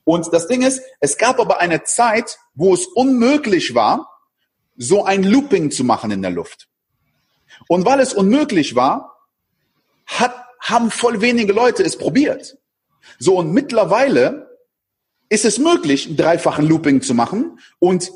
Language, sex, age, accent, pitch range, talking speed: German, male, 40-59, German, 160-255 Hz, 150 wpm